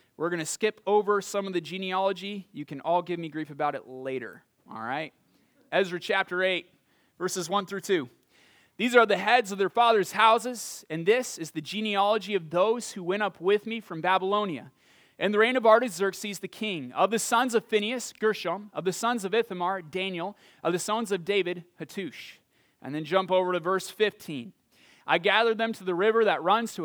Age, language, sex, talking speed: 30-49, English, male, 200 wpm